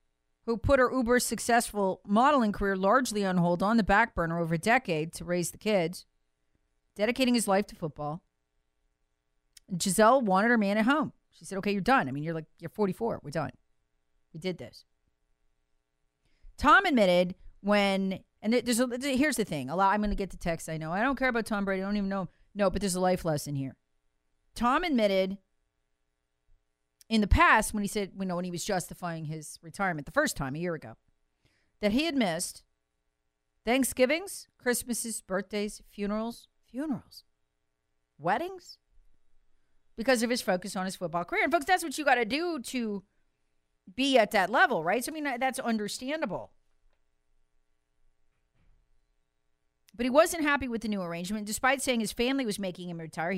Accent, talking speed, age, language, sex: American, 180 wpm, 40-59, English, female